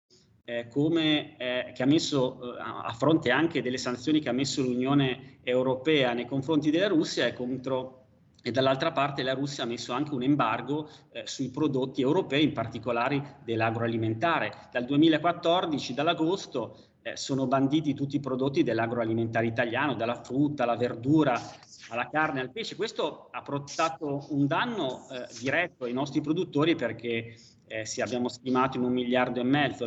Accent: native